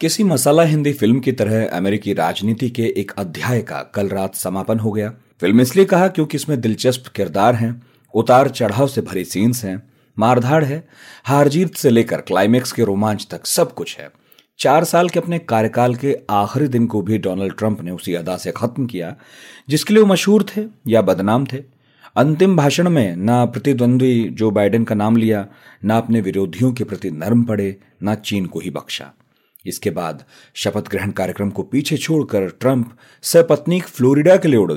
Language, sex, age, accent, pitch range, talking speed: Hindi, male, 40-59, native, 105-140 Hz, 180 wpm